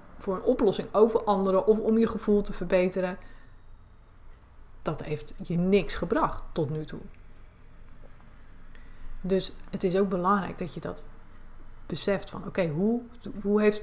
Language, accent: Dutch, Dutch